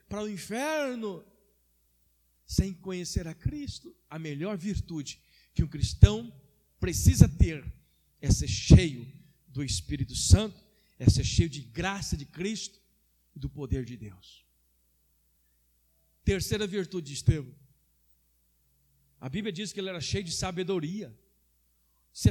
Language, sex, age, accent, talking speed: Portuguese, male, 50-69, Brazilian, 125 wpm